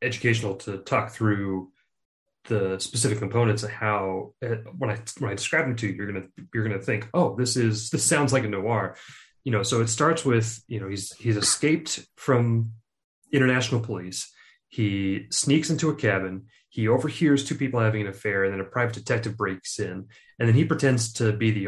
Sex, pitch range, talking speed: male, 105-125 Hz, 195 wpm